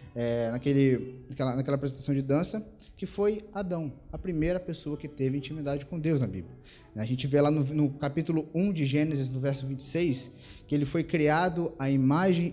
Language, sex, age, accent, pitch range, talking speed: Portuguese, male, 20-39, Brazilian, 135-175 Hz, 175 wpm